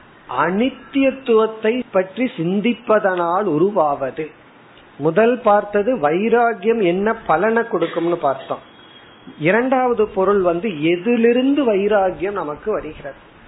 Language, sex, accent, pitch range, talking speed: Tamil, male, native, 165-225 Hz, 75 wpm